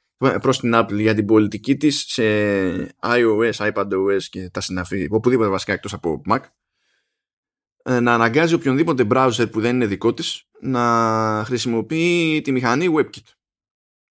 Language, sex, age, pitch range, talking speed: Greek, male, 20-39, 105-145 Hz, 135 wpm